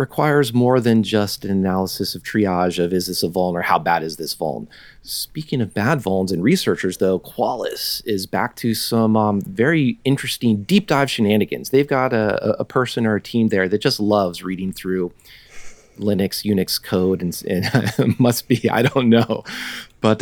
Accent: American